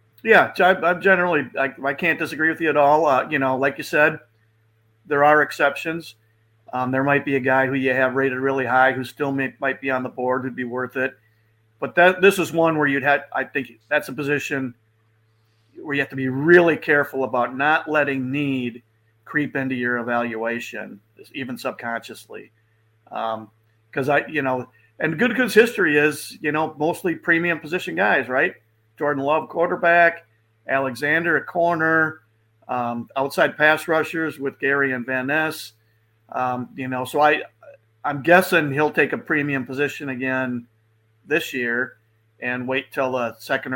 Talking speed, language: 170 wpm, English